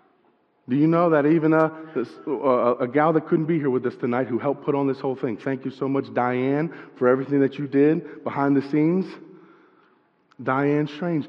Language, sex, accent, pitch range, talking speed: English, male, American, 125-150 Hz, 200 wpm